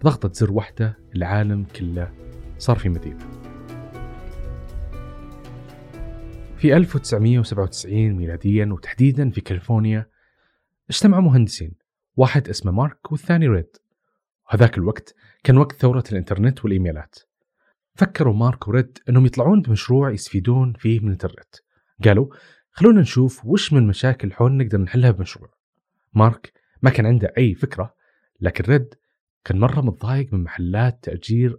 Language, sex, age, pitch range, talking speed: Arabic, male, 30-49, 100-130 Hz, 120 wpm